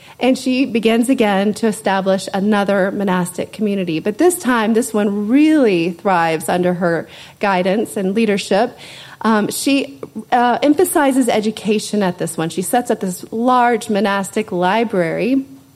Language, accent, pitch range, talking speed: English, American, 185-255 Hz, 135 wpm